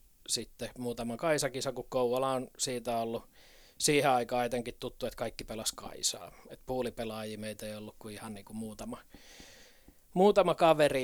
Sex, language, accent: male, Finnish, native